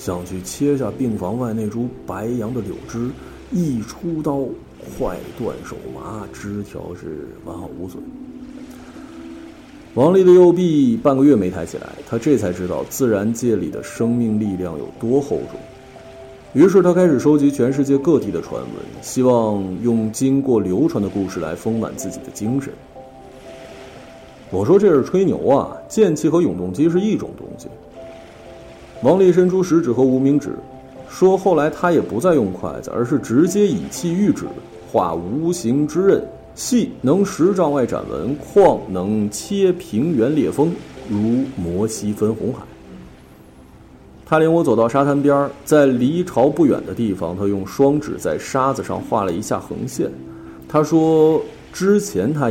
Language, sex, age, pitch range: Chinese, male, 50-69, 105-165 Hz